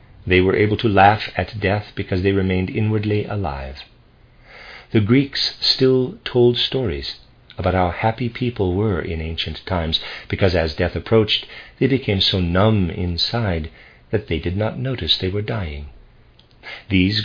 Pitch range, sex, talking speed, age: 85-115 Hz, male, 150 wpm, 50-69